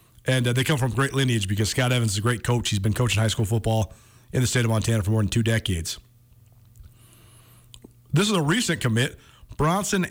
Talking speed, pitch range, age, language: 215 wpm, 115-150 Hz, 30-49, English